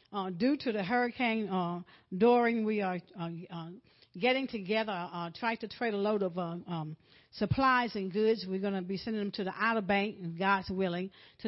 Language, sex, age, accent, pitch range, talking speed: English, female, 60-79, American, 180-215 Hz, 205 wpm